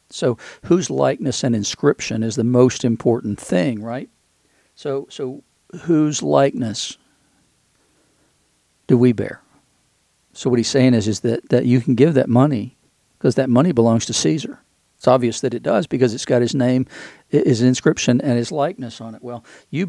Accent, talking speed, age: American, 170 wpm, 50-69